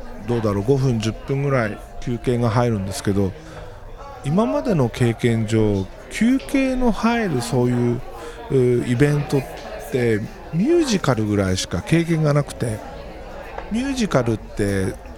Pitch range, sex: 105-150 Hz, male